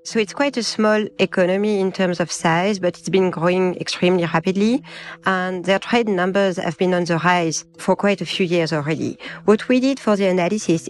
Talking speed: 205 wpm